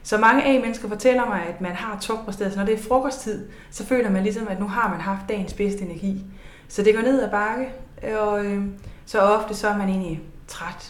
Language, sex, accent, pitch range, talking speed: Danish, female, native, 175-220 Hz, 220 wpm